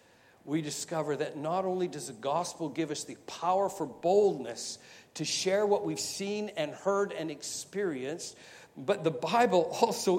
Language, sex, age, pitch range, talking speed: English, male, 60-79, 145-185 Hz, 160 wpm